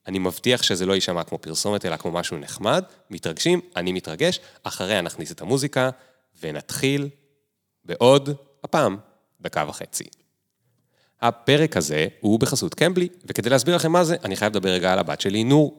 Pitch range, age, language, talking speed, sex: 95-140 Hz, 30-49, Hebrew, 155 wpm, male